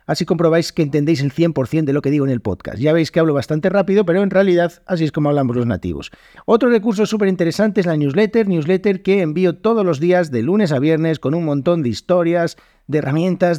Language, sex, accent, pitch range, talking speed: Spanish, male, Spanish, 150-195 Hz, 230 wpm